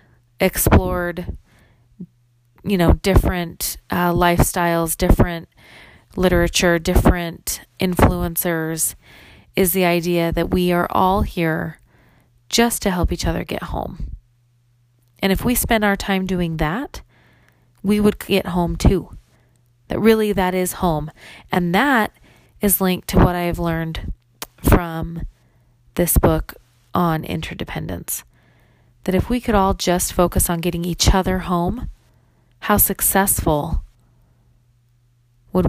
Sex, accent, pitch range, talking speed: female, American, 120-185 Hz, 120 wpm